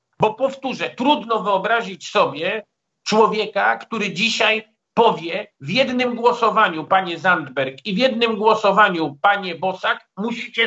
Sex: male